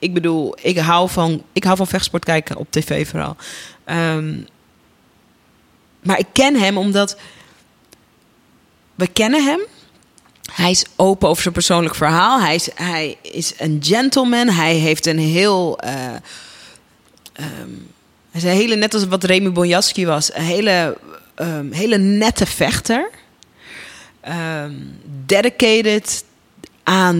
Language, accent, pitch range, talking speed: Dutch, Dutch, 165-205 Hz, 130 wpm